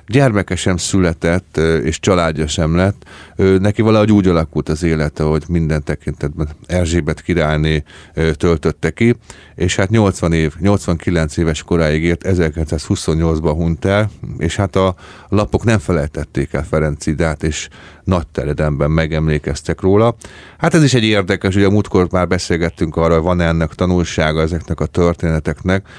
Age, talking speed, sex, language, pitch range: 30-49, 145 wpm, male, Hungarian, 80-95 Hz